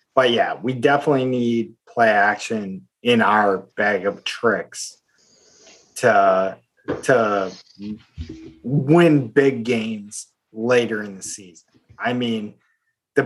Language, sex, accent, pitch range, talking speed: English, male, American, 110-140 Hz, 110 wpm